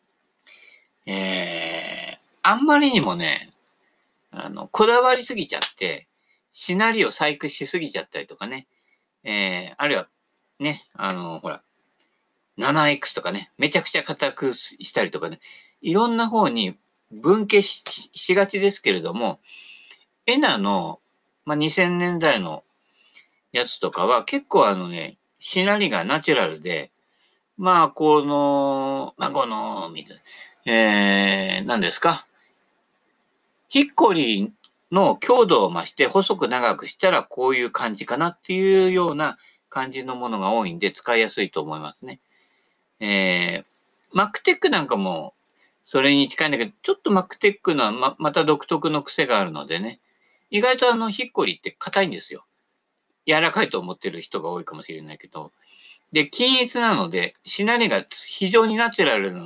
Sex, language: male, Japanese